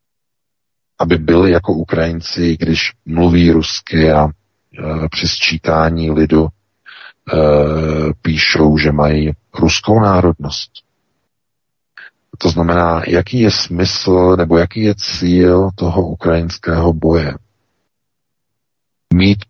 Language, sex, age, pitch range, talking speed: Czech, male, 40-59, 80-95 Hz, 95 wpm